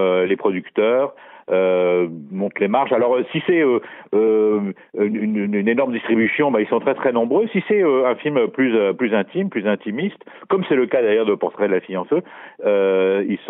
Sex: male